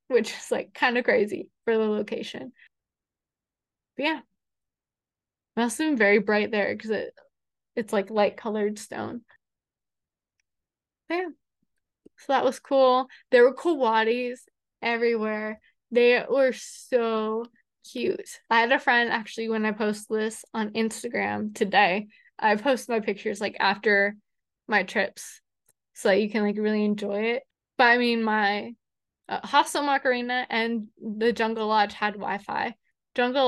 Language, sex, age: English, female, 20-39